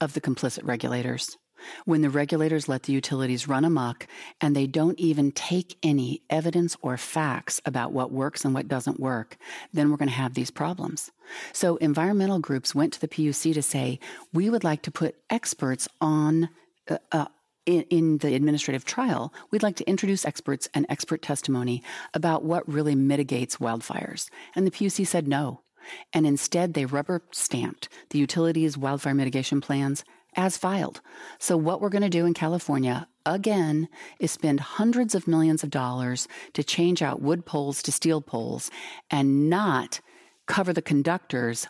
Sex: female